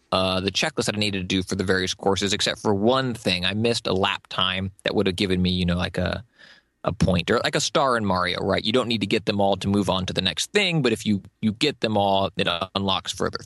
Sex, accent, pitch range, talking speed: male, American, 100-145 Hz, 280 wpm